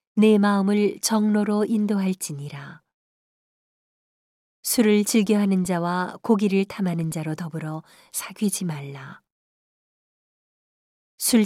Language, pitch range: Korean, 170-210 Hz